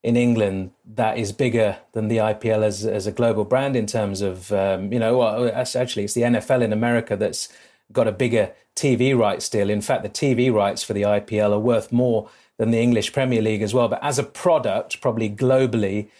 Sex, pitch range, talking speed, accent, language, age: male, 105-125 Hz, 210 wpm, British, English, 30-49